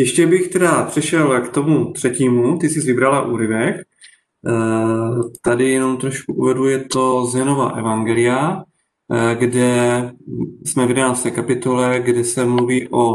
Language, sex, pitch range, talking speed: Czech, male, 120-135 Hz, 130 wpm